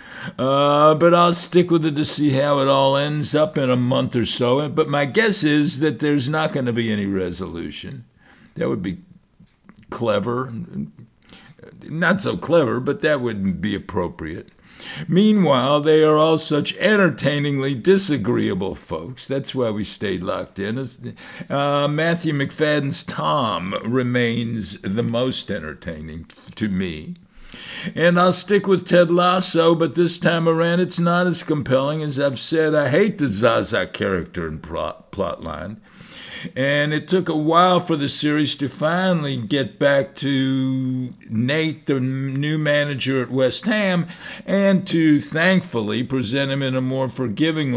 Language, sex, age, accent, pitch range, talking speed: English, male, 60-79, American, 125-165 Hz, 150 wpm